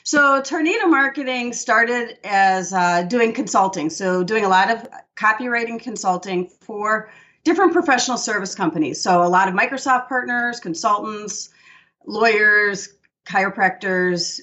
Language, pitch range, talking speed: English, 180-240 Hz, 120 wpm